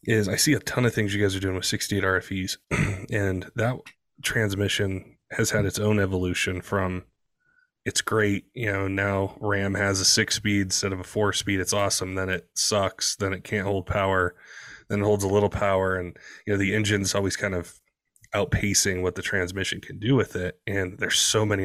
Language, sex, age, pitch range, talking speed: English, male, 20-39, 95-105 Hz, 200 wpm